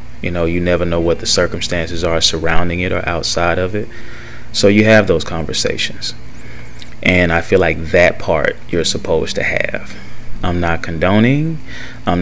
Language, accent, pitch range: English, American, 85-95 Hz